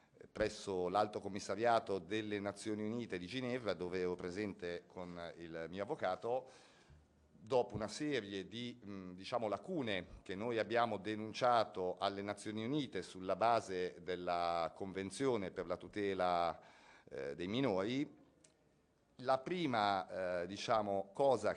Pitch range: 100-135 Hz